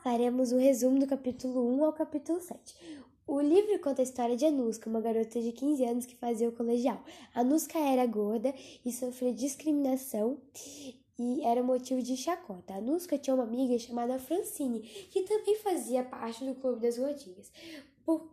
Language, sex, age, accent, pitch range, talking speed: Portuguese, female, 10-29, Brazilian, 235-310 Hz, 170 wpm